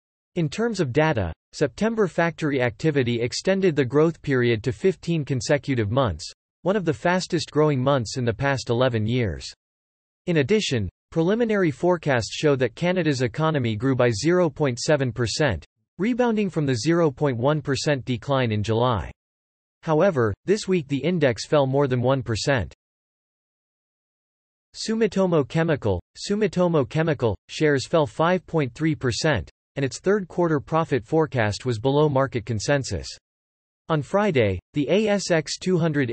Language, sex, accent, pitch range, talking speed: English, male, American, 120-165 Hz, 120 wpm